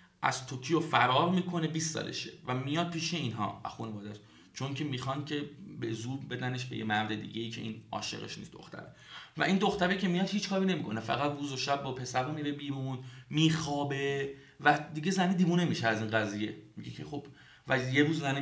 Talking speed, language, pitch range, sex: 200 wpm, Persian, 120-155 Hz, male